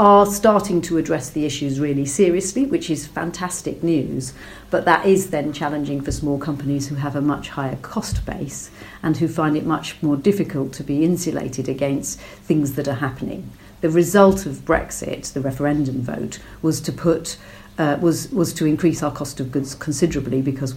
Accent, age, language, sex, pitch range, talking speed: British, 50-69, English, female, 140-165 Hz, 180 wpm